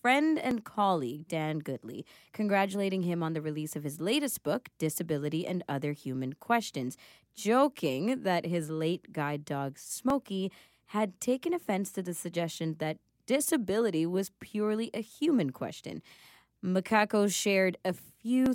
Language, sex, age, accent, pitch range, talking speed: English, female, 20-39, American, 155-215 Hz, 140 wpm